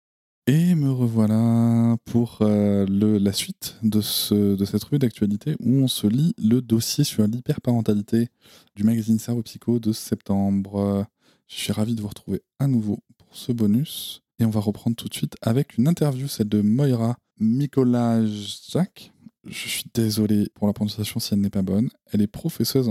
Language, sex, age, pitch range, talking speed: French, male, 20-39, 105-125 Hz, 175 wpm